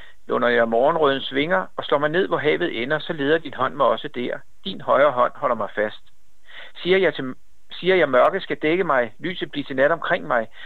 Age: 60-79